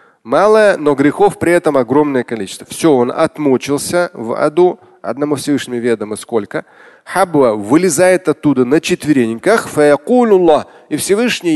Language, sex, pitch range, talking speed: Russian, male, 120-170 Hz, 115 wpm